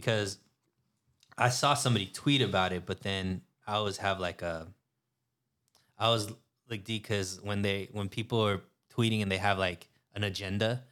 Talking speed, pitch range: 170 wpm, 95-115 Hz